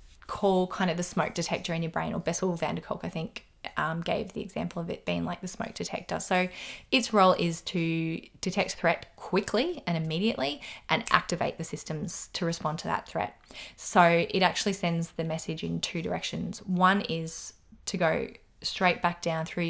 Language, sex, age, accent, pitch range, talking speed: English, female, 20-39, Australian, 170-205 Hz, 190 wpm